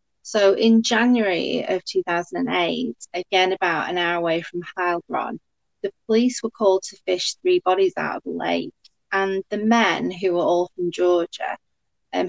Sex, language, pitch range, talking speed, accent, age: female, English, 175-225 Hz, 160 wpm, British, 30-49